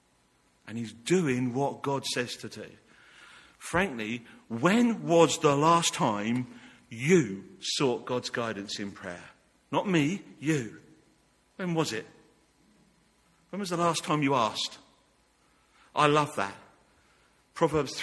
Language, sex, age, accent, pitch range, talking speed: English, male, 50-69, British, 120-165 Hz, 125 wpm